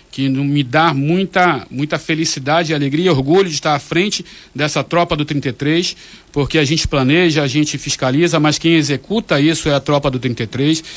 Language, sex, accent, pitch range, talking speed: Portuguese, male, Brazilian, 140-175 Hz, 180 wpm